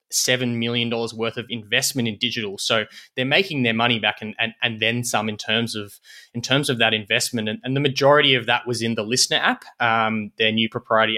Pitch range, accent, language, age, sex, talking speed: 110-125 Hz, Australian, English, 20-39, male, 220 wpm